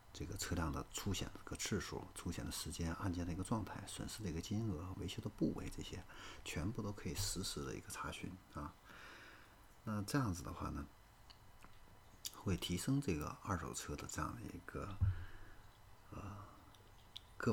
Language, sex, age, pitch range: Chinese, male, 50-69, 85-110 Hz